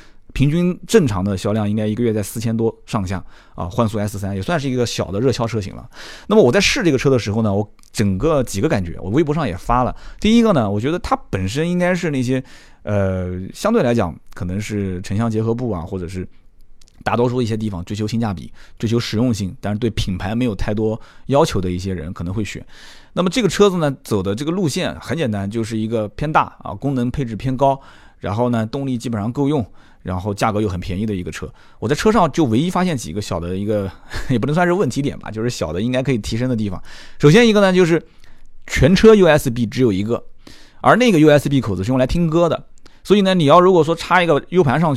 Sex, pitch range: male, 105-145 Hz